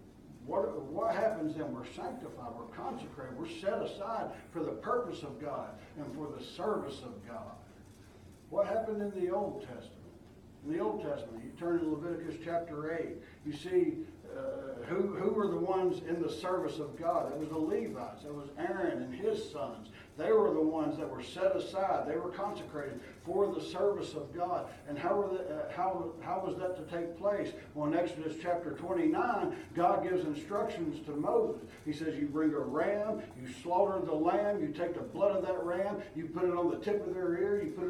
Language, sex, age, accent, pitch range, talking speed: English, male, 60-79, American, 155-205 Hz, 200 wpm